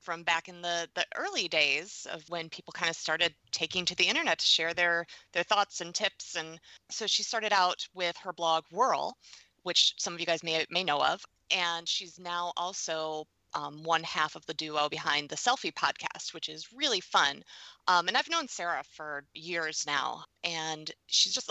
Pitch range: 160-205 Hz